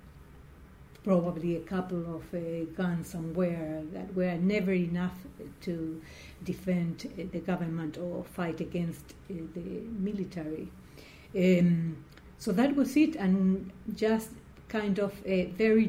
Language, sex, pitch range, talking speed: English, female, 175-205 Hz, 125 wpm